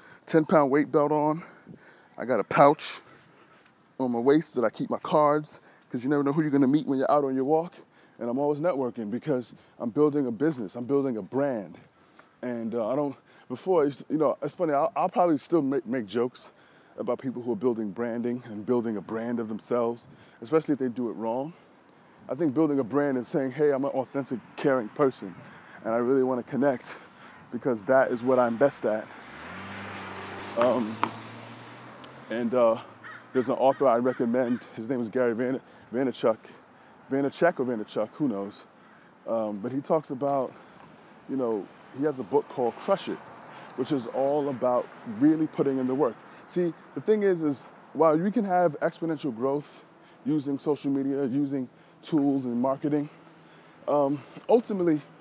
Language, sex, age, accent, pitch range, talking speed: English, male, 20-39, American, 125-160 Hz, 180 wpm